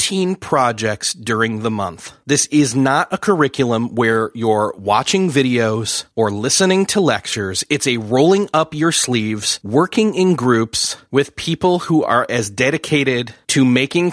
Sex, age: male, 30-49